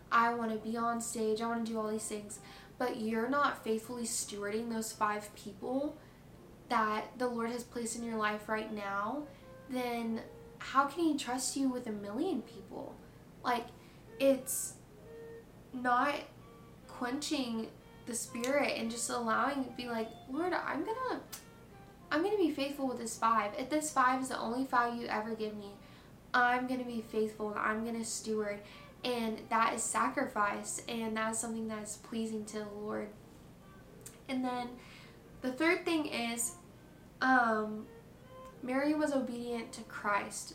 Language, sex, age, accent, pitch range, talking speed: English, female, 10-29, American, 220-255 Hz, 160 wpm